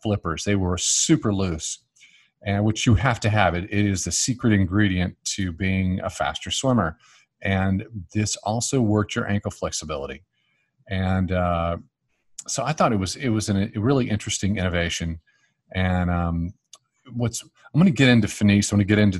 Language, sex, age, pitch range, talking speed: English, male, 40-59, 95-115 Hz, 180 wpm